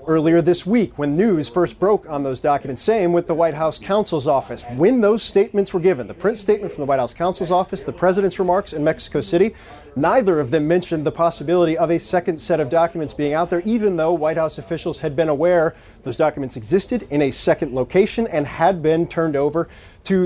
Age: 40-59